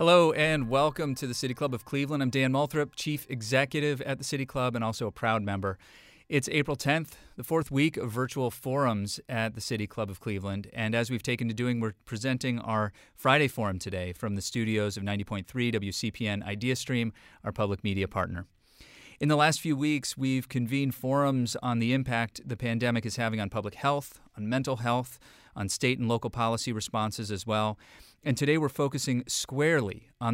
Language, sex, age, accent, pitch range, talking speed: English, male, 30-49, American, 110-135 Hz, 190 wpm